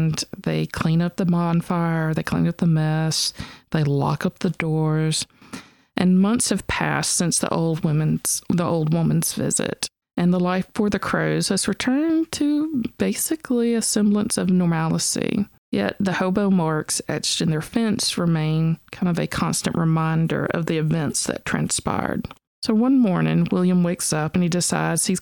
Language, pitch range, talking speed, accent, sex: English, 160-195 Hz, 165 wpm, American, female